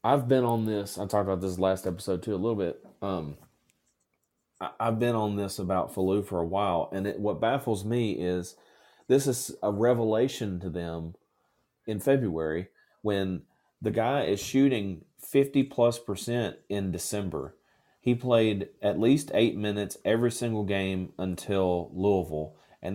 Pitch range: 95-120 Hz